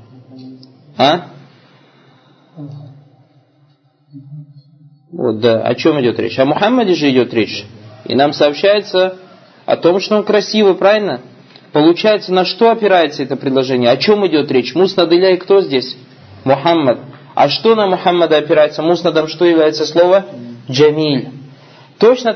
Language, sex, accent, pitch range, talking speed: Russian, male, native, 135-195 Hz, 130 wpm